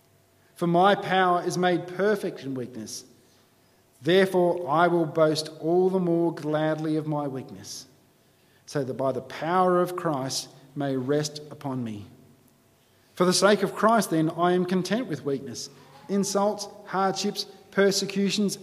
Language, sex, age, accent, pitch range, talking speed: English, male, 40-59, Australian, 140-195 Hz, 140 wpm